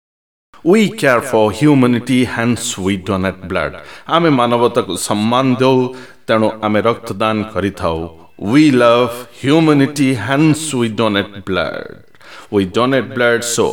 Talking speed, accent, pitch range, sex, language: 125 wpm, native, 110-140 Hz, male, Hindi